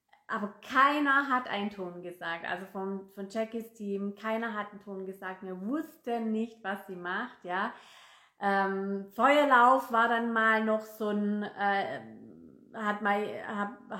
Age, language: 30-49, German